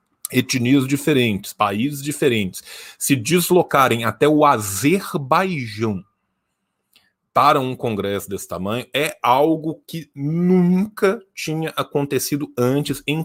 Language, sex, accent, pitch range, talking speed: Portuguese, male, Brazilian, 115-155 Hz, 100 wpm